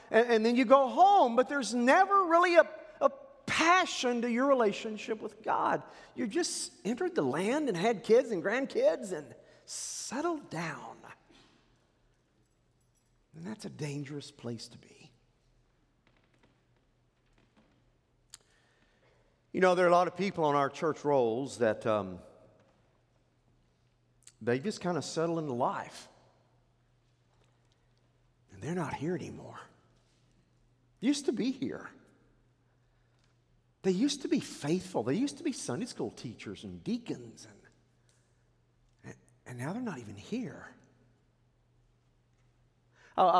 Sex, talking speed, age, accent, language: male, 125 wpm, 50-69, American, English